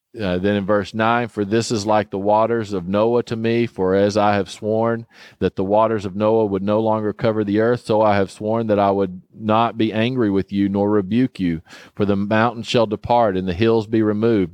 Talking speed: 230 wpm